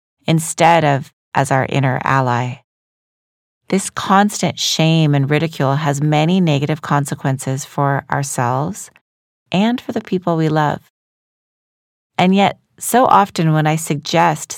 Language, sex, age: English, female, 30-49